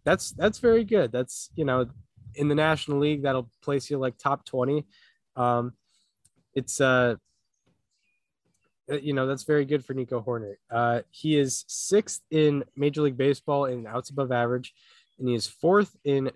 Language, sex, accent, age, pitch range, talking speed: English, male, American, 20-39, 125-160 Hz, 165 wpm